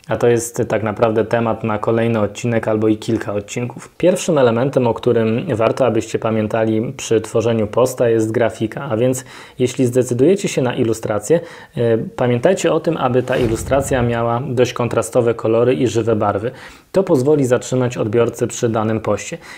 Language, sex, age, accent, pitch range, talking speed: Polish, male, 20-39, native, 115-135 Hz, 160 wpm